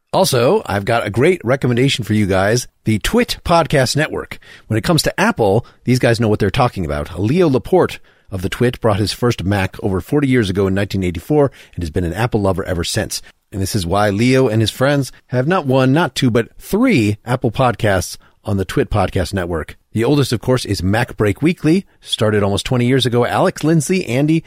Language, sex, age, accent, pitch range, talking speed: English, male, 40-59, American, 100-135 Hz, 210 wpm